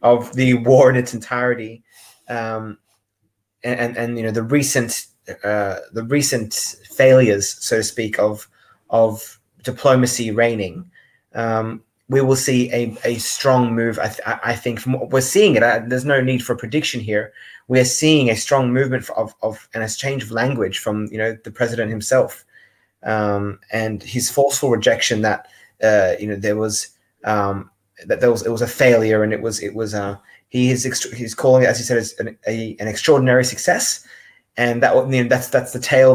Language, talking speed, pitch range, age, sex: English, 190 wpm, 110-125 Hz, 20-39, male